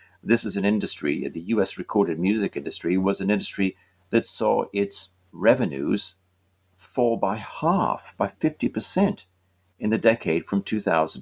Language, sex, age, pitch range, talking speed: English, male, 50-69, 90-115 Hz, 145 wpm